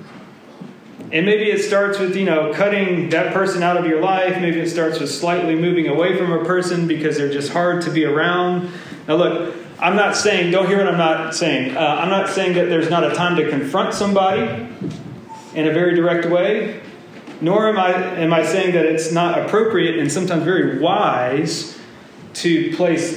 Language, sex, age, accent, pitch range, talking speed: English, male, 30-49, American, 155-195 Hz, 195 wpm